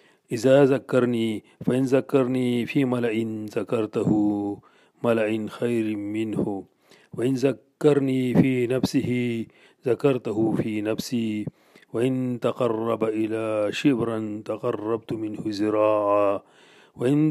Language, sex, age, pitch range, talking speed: Urdu, male, 40-59, 110-130 Hz, 85 wpm